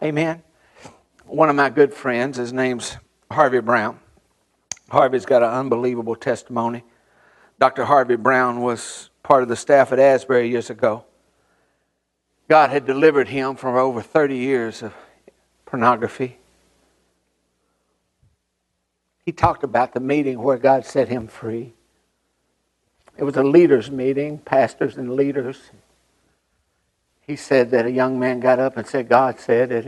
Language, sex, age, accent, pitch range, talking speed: English, male, 60-79, American, 115-140 Hz, 135 wpm